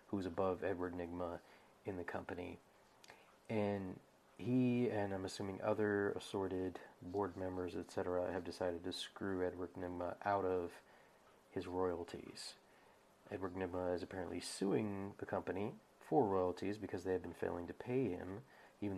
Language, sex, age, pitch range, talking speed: English, male, 30-49, 90-100 Hz, 140 wpm